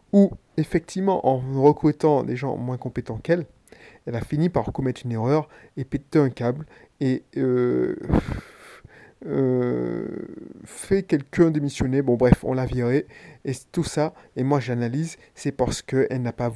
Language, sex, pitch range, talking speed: French, male, 130-160 Hz, 150 wpm